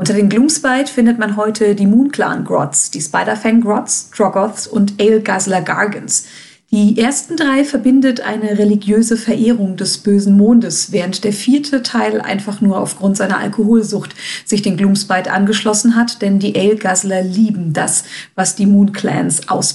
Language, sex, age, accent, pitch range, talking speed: German, female, 40-59, German, 195-235 Hz, 150 wpm